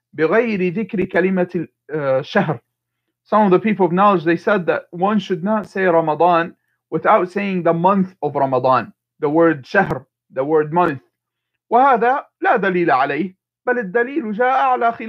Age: 40-59